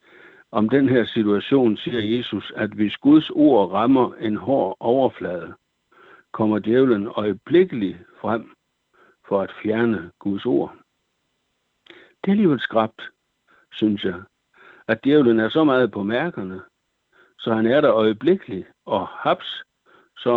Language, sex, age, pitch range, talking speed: Danish, male, 60-79, 105-130 Hz, 130 wpm